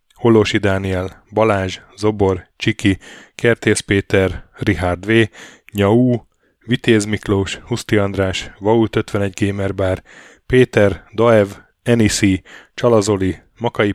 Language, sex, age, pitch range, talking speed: Hungarian, male, 10-29, 95-115 Hz, 95 wpm